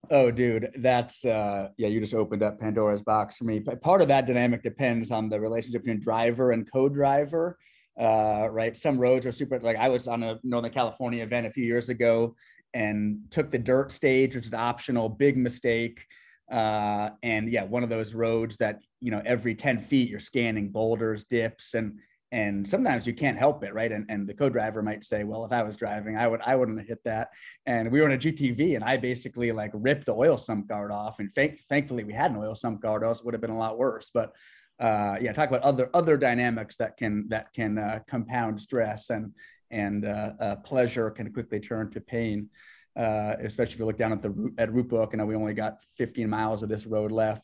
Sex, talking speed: male, 225 wpm